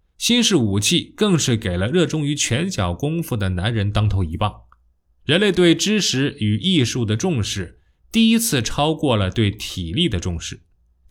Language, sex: Chinese, male